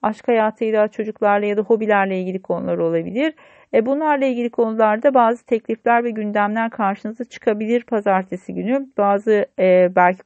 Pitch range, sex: 185-245 Hz, female